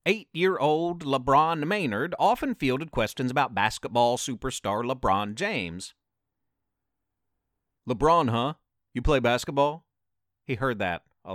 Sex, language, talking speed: male, English, 105 wpm